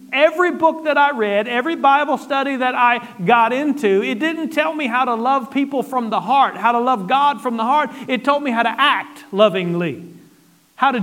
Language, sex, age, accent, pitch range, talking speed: English, male, 40-59, American, 240-305 Hz, 210 wpm